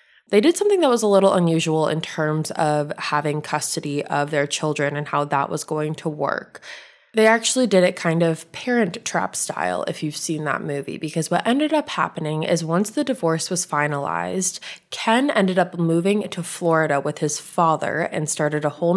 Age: 20-39